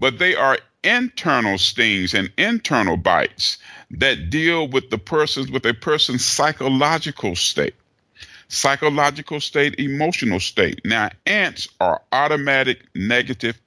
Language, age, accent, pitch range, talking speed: English, 50-69, American, 105-155 Hz, 120 wpm